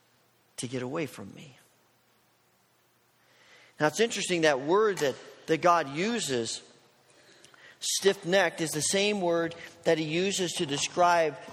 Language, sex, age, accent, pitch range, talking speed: English, male, 40-59, American, 155-205 Hz, 130 wpm